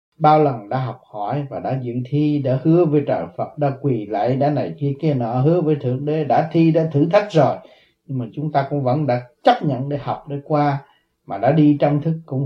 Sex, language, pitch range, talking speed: male, Vietnamese, 135-170 Hz, 245 wpm